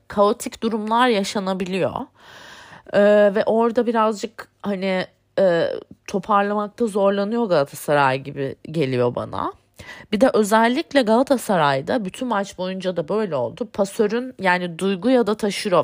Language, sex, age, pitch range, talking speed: Turkish, female, 30-49, 170-235 Hz, 115 wpm